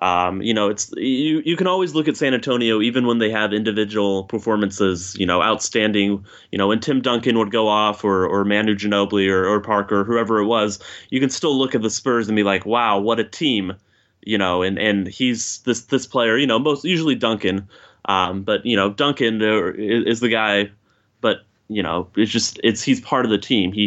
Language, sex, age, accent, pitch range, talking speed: English, male, 20-39, American, 100-120 Hz, 215 wpm